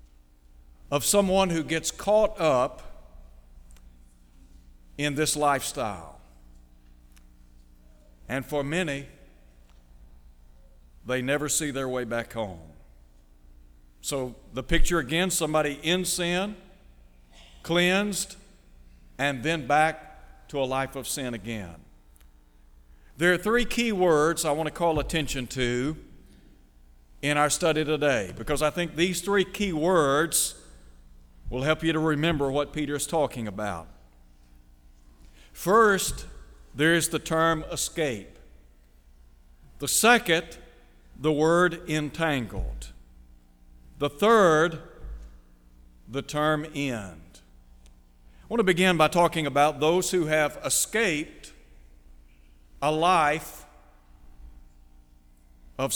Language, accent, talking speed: English, American, 105 wpm